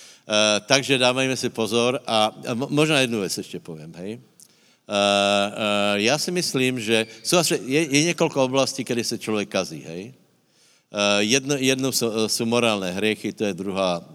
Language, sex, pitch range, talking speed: Slovak, male, 100-130 Hz, 160 wpm